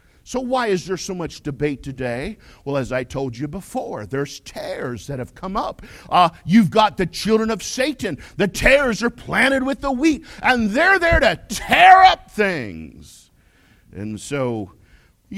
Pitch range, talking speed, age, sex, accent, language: 160-245 Hz, 170 wpm, 50-69, male, American, English